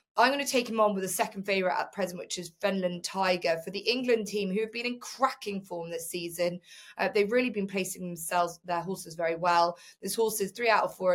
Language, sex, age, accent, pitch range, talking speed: English, female, 20-39, British, 180-215 Hz, 240 wpm